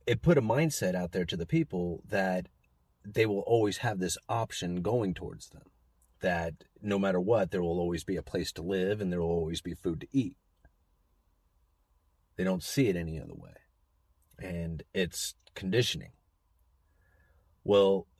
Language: English